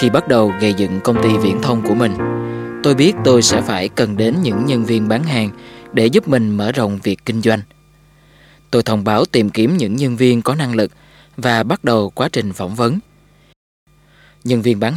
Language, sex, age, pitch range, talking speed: Vietnamese, male, 20-39, 110-150 Hz, 210 wpm